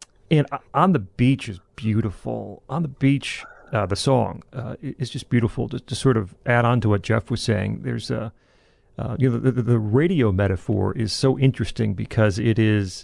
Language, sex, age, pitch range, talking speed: English, male, 40-59, 100-130 Hz, 195 wpm